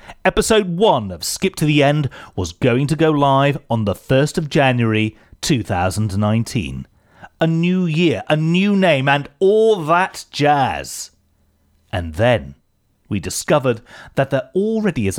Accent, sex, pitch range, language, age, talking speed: British, male, 90-150 Hz, English, 40-59, 140 wpm